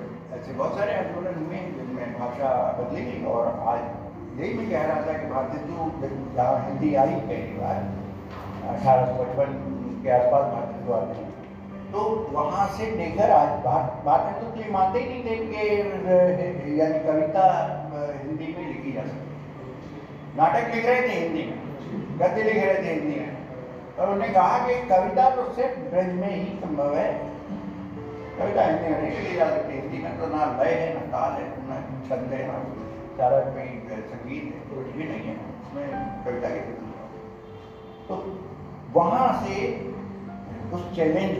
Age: 60-79